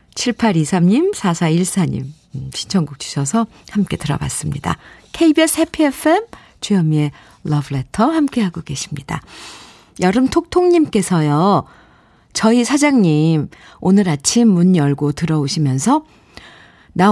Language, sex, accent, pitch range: Korean, female, native, 175-255 Hz